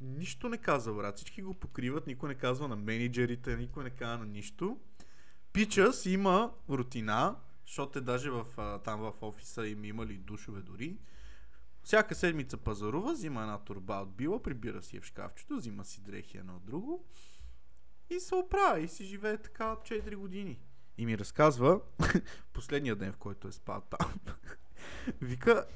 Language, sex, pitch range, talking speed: Bulgarian, male, 105-165 Hz, 175 wpm